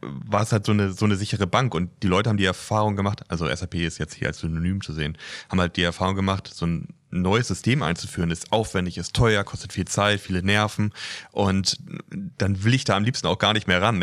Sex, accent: male, German